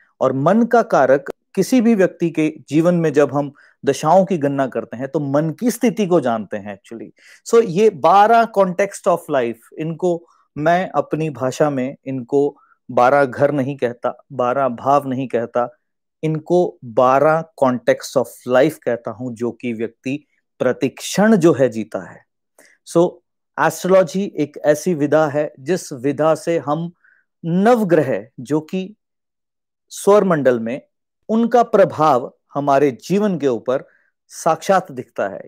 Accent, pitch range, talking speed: native, 140-195 Hz, 145 wpm